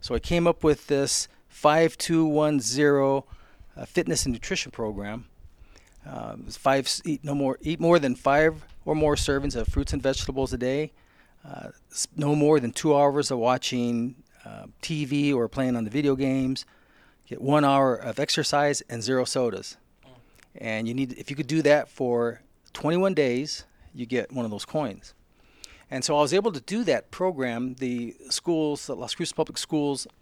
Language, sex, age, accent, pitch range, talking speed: English, male, 40-59, American, 120-150 Hz, 175 wpm